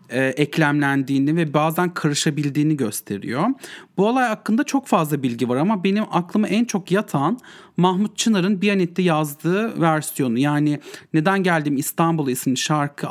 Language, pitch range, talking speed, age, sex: English, 145-205 Hz, 135 wpm, 40-59, male